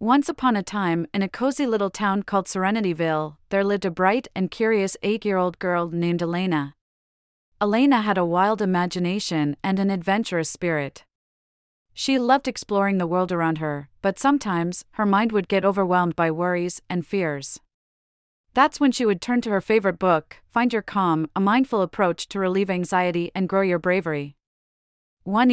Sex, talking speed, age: female, 165 wpm, 30-49